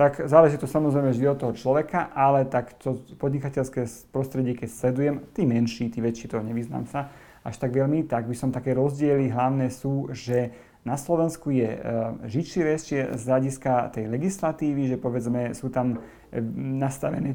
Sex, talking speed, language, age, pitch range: male, 170 wpm, Slovak, 30-49, 120-145 Hz